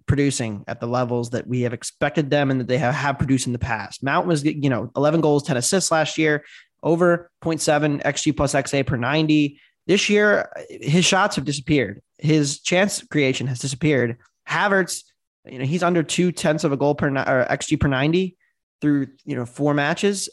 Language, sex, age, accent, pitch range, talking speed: English, male, 20-39, American, 135-175 Hz, 195 wpm